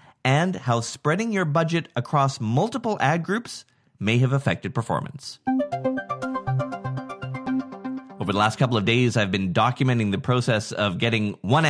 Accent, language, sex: American, English, male